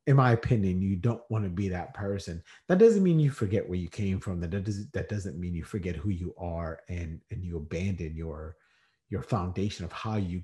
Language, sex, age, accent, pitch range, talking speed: English, male, 30-49, American, 90-120 Hz, 220 wpm